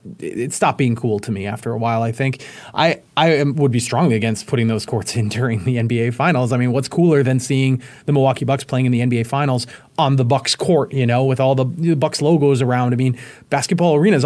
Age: 30-49